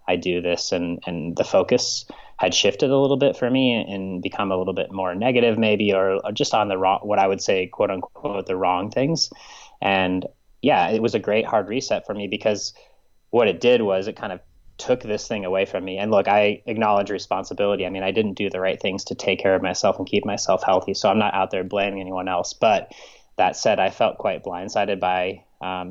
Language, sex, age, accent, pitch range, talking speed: English, male, 20-39, American, 95-105 Hz, 230 wpm